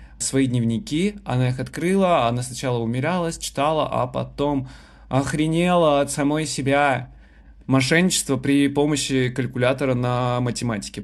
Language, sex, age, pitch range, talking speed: Russian, male, 20-39, 120-140 Hz, 115 wpm